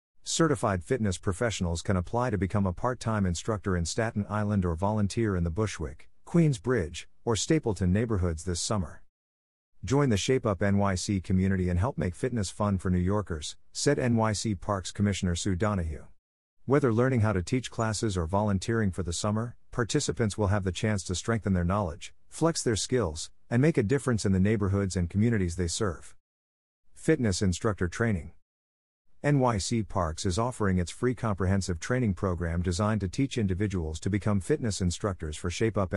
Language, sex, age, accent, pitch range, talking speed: English, male, 50-69, American, 90-115 Hz, 170 wpm